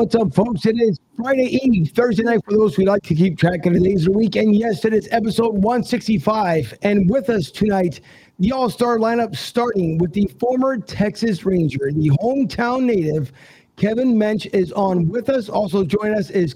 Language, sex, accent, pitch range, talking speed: English, male, American, 185-230 Hz, 195 wpm